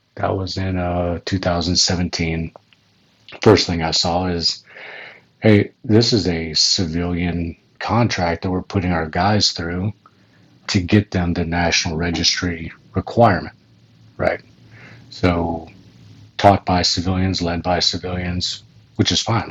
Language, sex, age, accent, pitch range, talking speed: English, male, 40-59, American, 85-100 Hz, 125 wpm